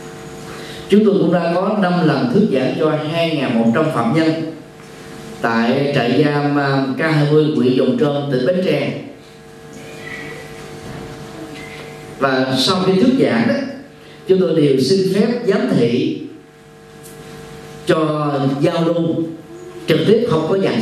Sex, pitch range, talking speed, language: male, 135-200 Hz, 125 wpm, Vietnamese